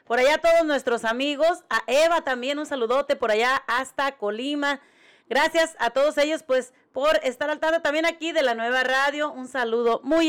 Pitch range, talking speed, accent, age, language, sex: 235-305 Hz, 185 wpm, Mexican, 30-49, Spanish, female